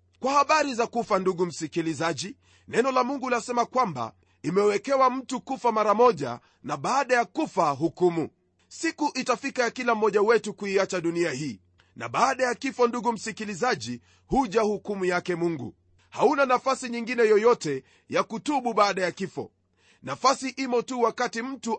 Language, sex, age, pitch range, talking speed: Swahili, male, 40-59, 180-250 Hz, 150 wpm